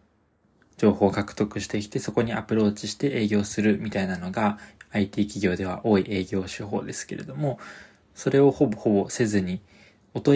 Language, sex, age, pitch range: Japanese, male, 20-39, 100-135 Hz